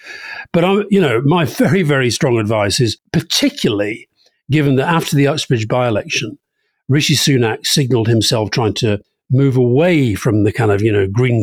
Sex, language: male, English